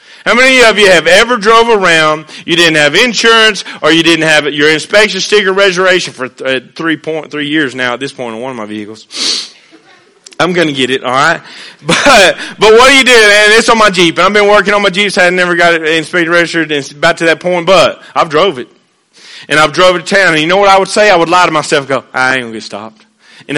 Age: 30-49